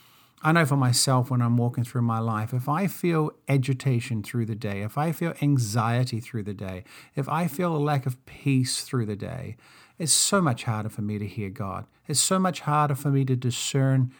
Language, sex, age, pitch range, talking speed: English, male, 50-69, 120-145 Hz, 215 wpm